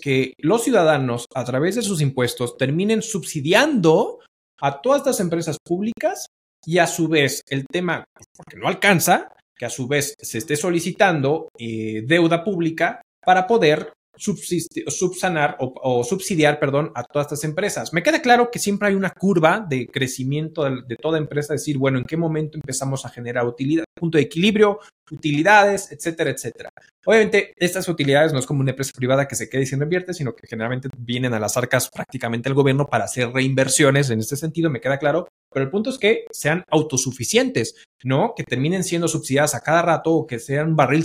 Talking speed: 185 wpm